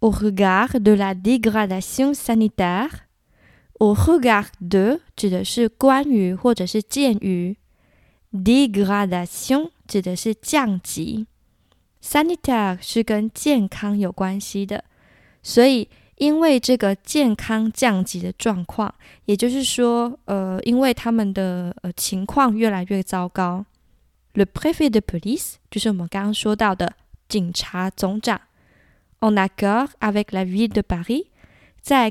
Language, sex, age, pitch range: Chinese, female, 20-39, 195-250 Hz